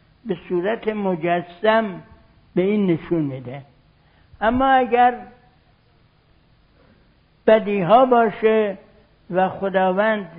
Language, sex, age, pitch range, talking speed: Persian, male, 60-79, 165-220 Hz, 80 wpm